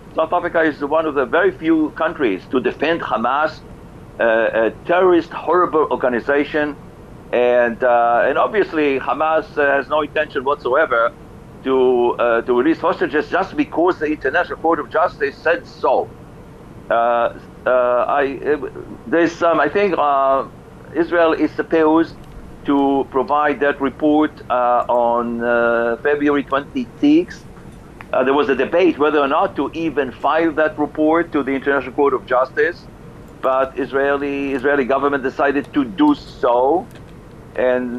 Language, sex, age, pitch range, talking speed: English, male, 60-79, 135-160 Hz, 135 wpm